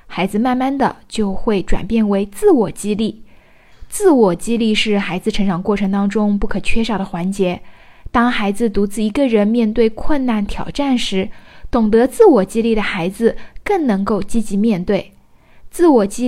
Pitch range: 205-270 Hz